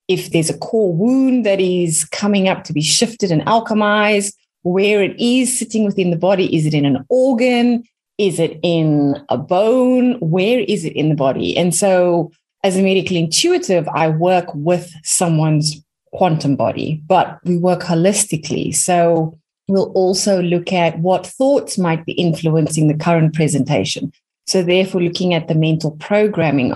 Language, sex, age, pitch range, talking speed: English, female, 30-49, 160-195 Hz, 165 wpm